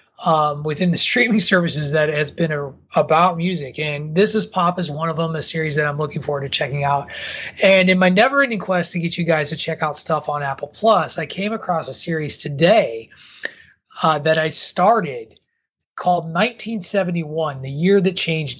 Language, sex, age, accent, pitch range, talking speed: English, male, 30-49, American, 155-210 Hz, 195 wpm